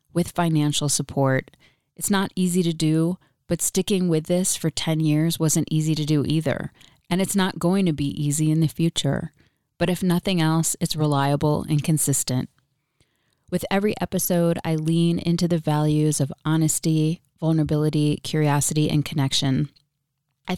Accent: American